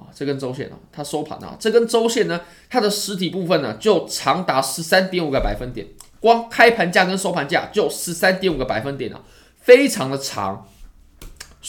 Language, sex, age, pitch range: Chinese, male, 20-39, 130-205 Hz